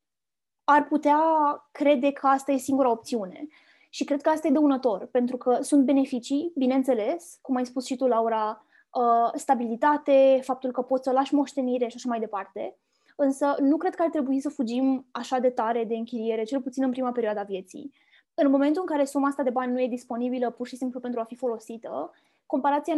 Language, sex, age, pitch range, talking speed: Romanian, female, 20-39, 235-285 Hz, 195 wpm